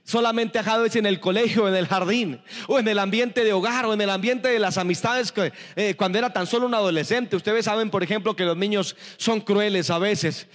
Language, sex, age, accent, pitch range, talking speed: Spanish, male, 30-49, Mexican, 210-275 Hz, 235 wpm